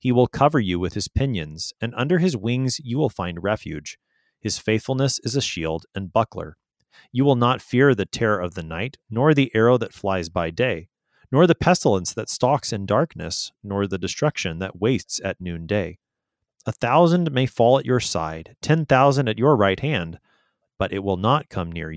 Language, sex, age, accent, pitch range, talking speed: English, male, 30-49, American, 95-130 Hz, 195 wpm